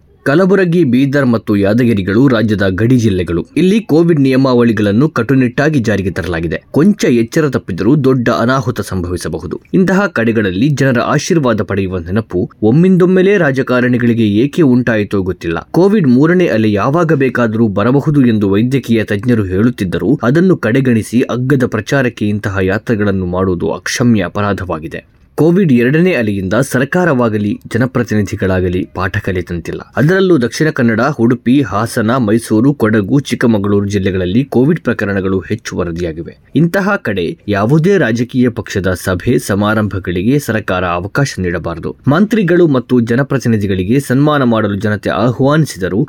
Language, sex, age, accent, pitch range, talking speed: Kannada, male, 20-39, native, 100-135 Hz, 110 wpm